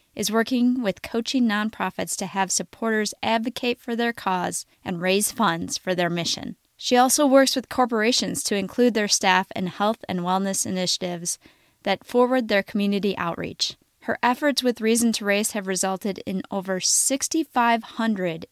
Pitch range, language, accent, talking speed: 190-240 Hz, English, American, 155 wpm